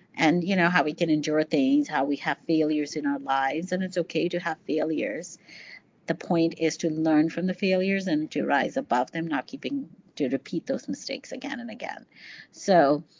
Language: English